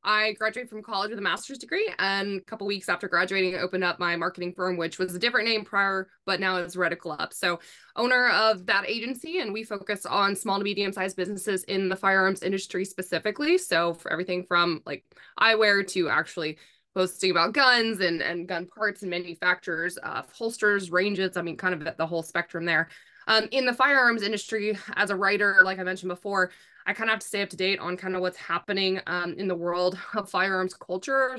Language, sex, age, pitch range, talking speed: English, female, 20-39, 180-215 Hz, 215 wpm